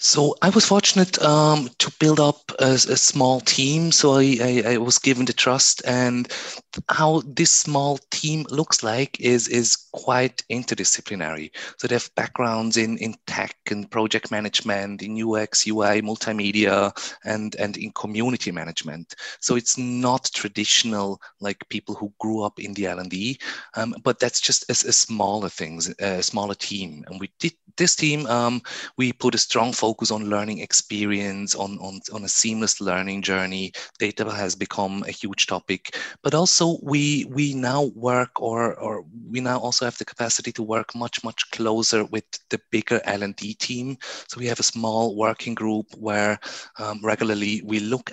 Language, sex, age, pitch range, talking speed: English, male, 30-49, 100-125 Hz, 170 wpm